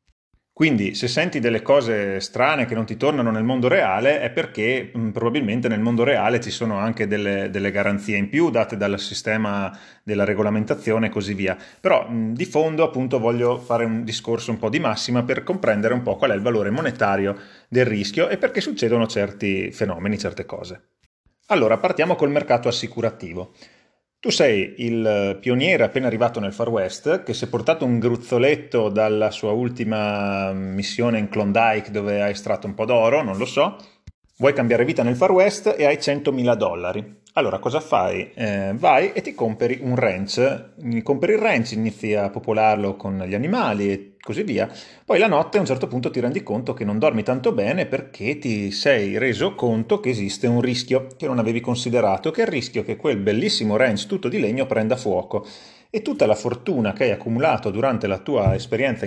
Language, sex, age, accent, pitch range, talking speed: Italian, male, 30-49, native, 105-125 Hz, 190 wpm